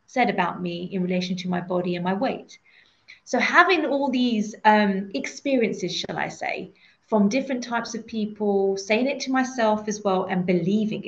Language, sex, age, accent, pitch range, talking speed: English, female, 30-49, British, 190-225 Hz, 180 wpm